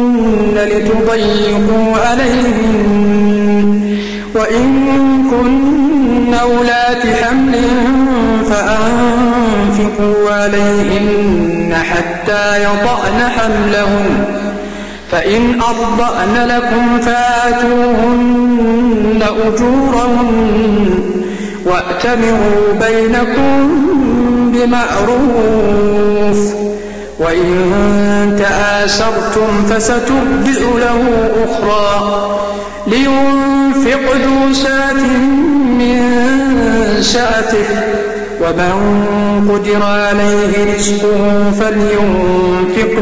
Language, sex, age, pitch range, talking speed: Arabic, male, 50-69, 205-245 Hz, 45 wpm